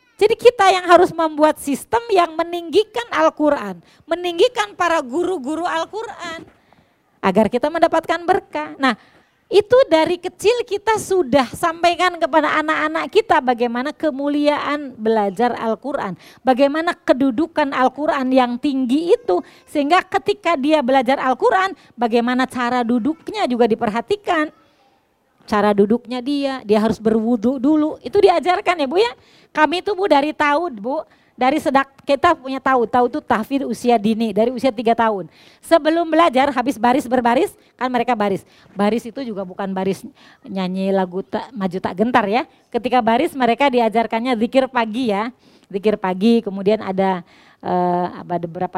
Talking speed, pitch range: 135 wpm, 230-330 Hz